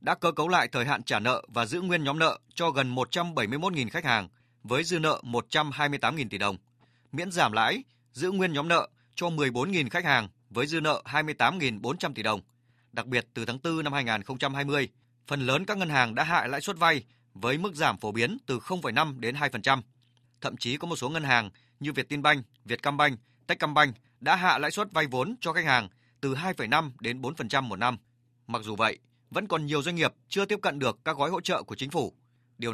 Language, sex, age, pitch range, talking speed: Vietnamese, male, 20-39, 120-160 Hz, 210 wpm